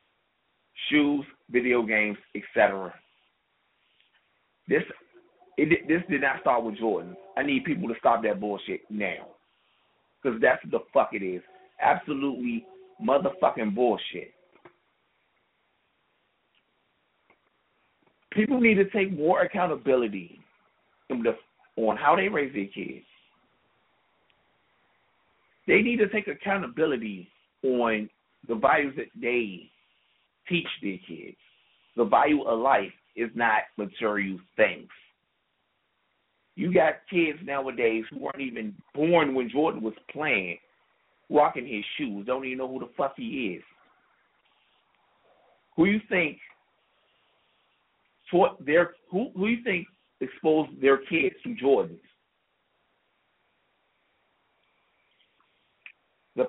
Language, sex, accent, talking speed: English, male, American, 105 wpm